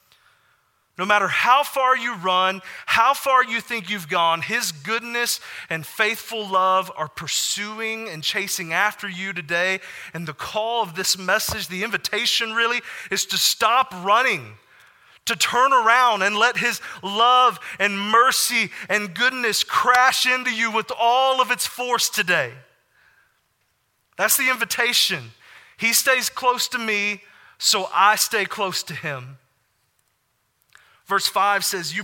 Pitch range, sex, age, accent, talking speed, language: 190-235 Hz, male, 30-49, American, 140 wpm, English